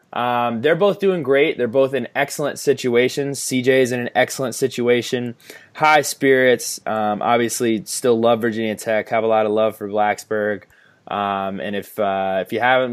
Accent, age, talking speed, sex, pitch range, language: American, 20-39, 175 wpm, male, 110-135 Hz, English